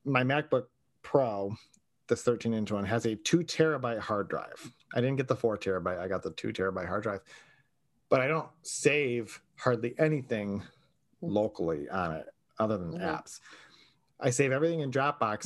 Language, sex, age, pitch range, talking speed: English, male, 30-49, 110-145 Hz, 165 wpm